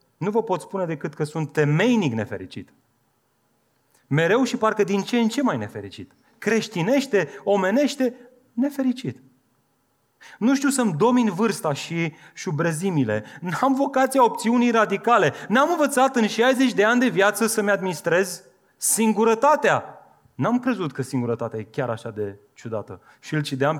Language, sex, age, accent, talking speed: Romanian, male, 30-49, native, 140 wpm